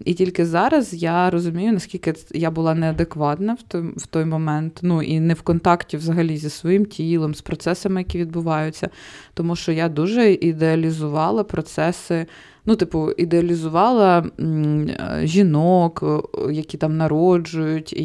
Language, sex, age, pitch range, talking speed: Ukrainian, female, 20-39, 155-175 Hz, 125 wpm